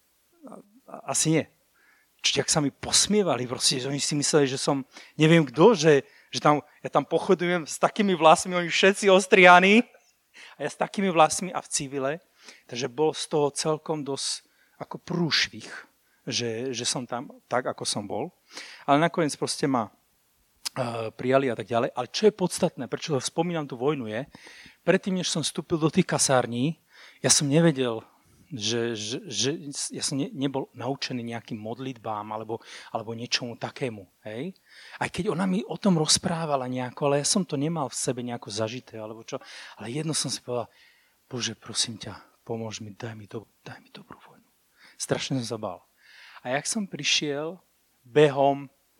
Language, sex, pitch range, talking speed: Slovak, male, 125-170 Hz, 170 wpm